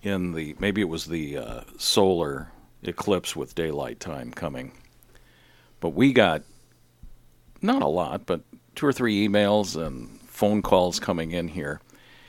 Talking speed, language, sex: 145 wpm, English, male